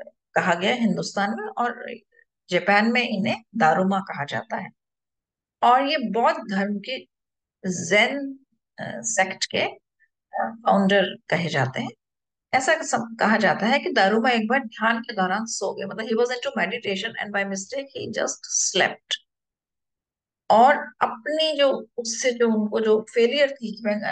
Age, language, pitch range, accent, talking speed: 50-69, Hindi, 200-275 Hz, native, 125 wpm